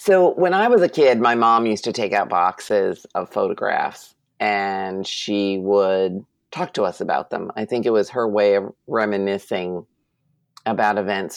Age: 40-59